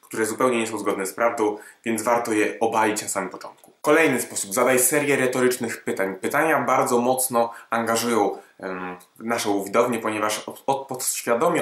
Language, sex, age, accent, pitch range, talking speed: Polish, male, 20-39, native, 110-130 Hz, 145 wpm